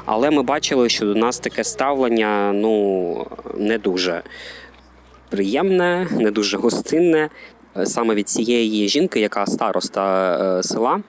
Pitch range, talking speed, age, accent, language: 100-115 Hz, 120 wpm, 20-39, native, Ukrainian